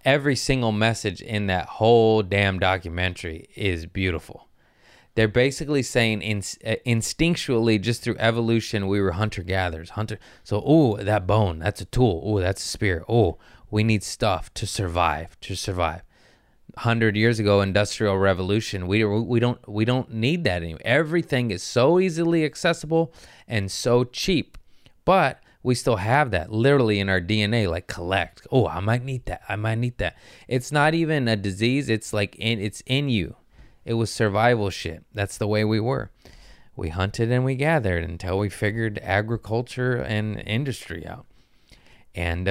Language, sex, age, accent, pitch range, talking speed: English, male, 20-39, American, 95-120 Hz, 165 wpm